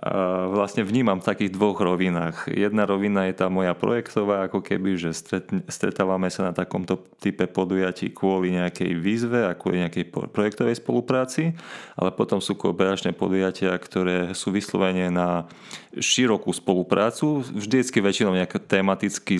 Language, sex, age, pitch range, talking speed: Slovak, male, 30-49, 90-100 Hz, 135 wpm